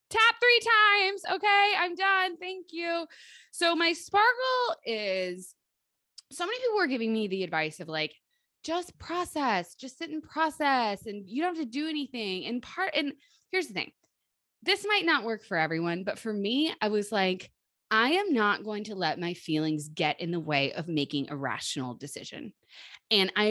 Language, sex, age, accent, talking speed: English, female, 20-39, American, 185 wpm